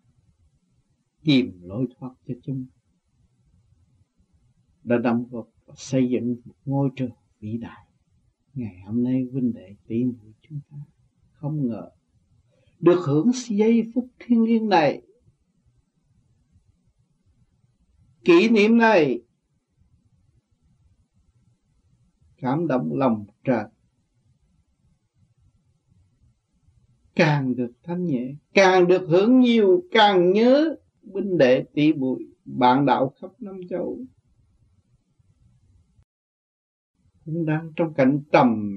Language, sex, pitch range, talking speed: Vietnamese, male, 115-165 Hz, 100 wpm